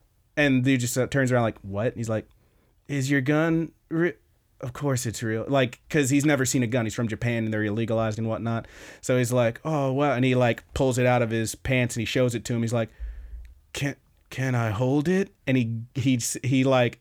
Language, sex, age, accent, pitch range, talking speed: English, male, 30-49, American, 120-155 Hz, 235 wpm